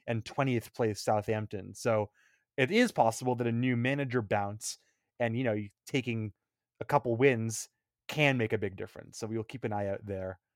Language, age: English, 20-39